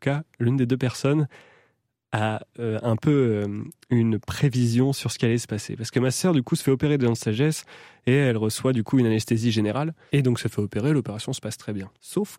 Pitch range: 110-140 Hz